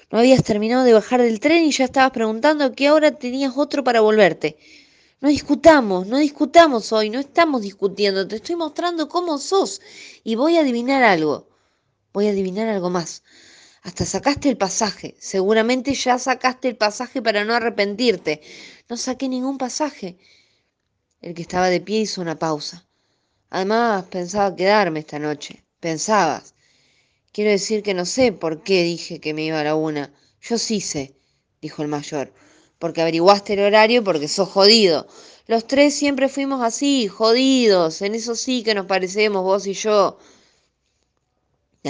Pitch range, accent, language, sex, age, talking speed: 155-240 Hz, Argentinian, Spanish, female, 20-39, 165 wpm